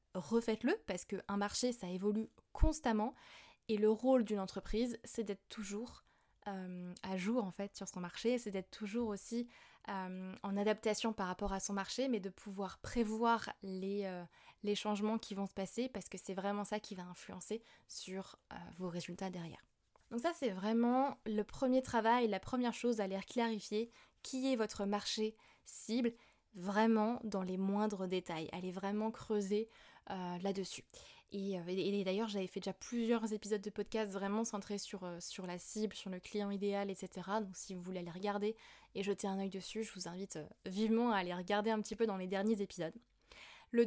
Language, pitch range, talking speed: French, 195-230 Hz, 190 wpm